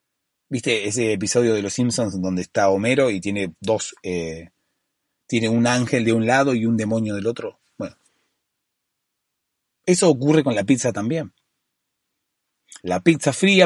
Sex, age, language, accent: male, 30-49, Spanish, Argentinian